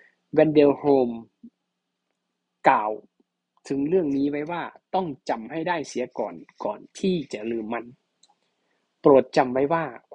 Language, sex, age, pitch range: Thai, male, 20-39, 120-155 Hz